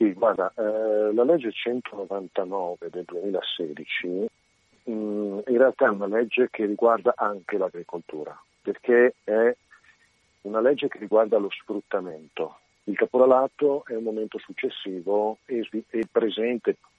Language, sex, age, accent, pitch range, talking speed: Italian, male, 50-69, native, 105-135 Hz, 120 wpm